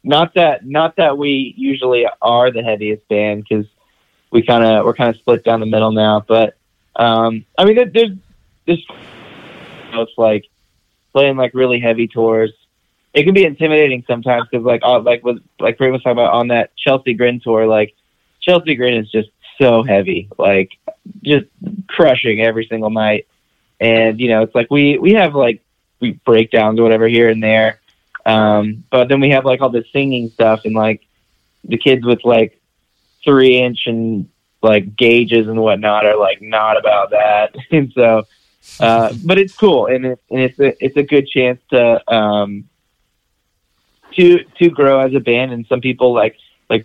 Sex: male